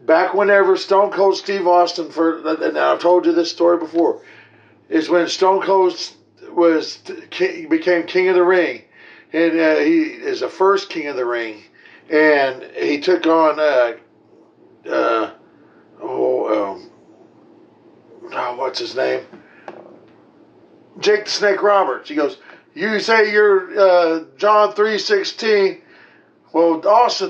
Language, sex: English, male